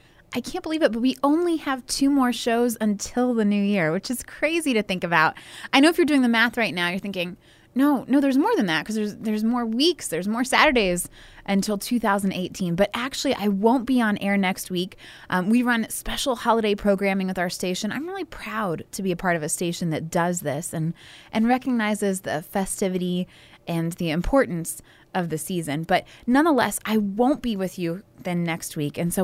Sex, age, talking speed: female, 20-39, 210 wpm